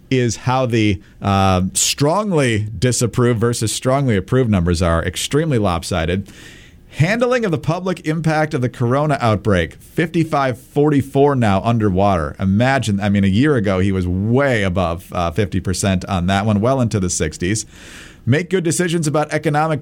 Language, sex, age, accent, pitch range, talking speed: English, male, 40-59, American, 100-150 Hz, 150 wpm